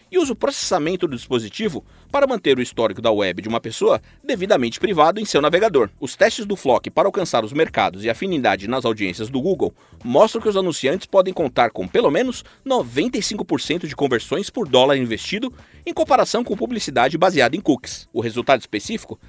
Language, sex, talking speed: Portuguese, male, 185 wpm